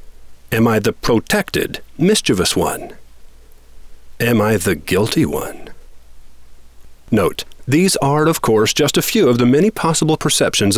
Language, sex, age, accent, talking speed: English, male, 50-69, American, 135 wpm